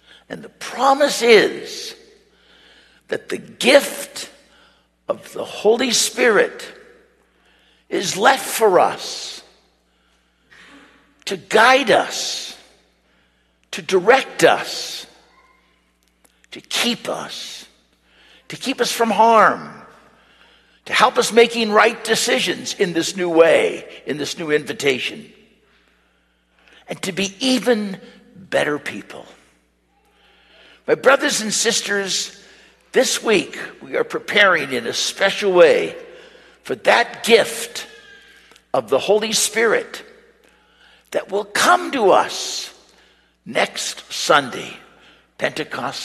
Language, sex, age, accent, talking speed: English, male, 60-79, American, 100 wpm